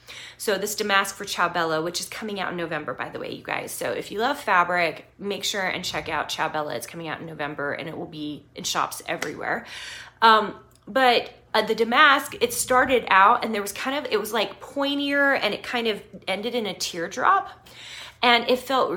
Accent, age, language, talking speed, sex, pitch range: American, 20-39, English, 210 wpm, female, 170-230 Hz